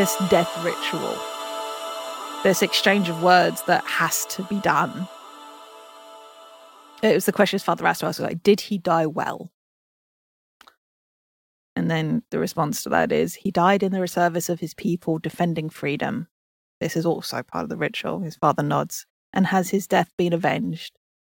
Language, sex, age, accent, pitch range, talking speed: English, female, 30-49, British, 150-190 Hz, 170 wpm